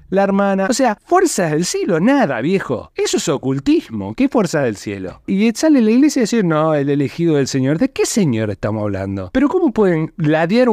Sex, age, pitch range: male, 20-39, 125-165 Hz